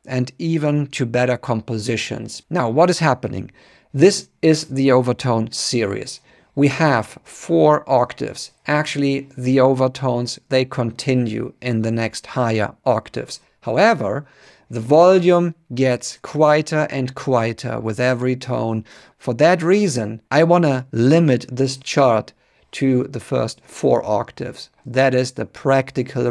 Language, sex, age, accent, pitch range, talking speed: English, male, 50-69, German, 115-145 Hz, 130 wpm